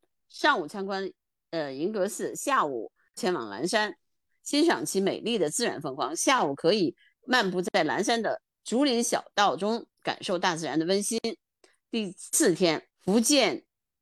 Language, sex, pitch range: Chinese, female, 185-265 Hz